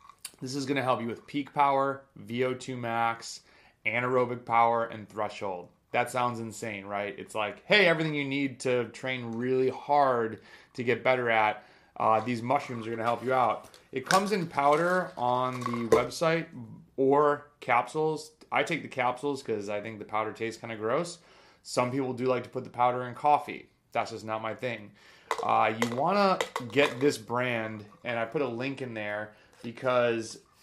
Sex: male